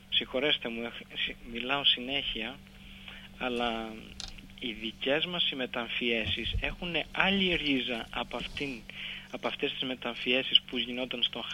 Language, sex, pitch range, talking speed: Greek, male, 115-150 Hz, 115 wpm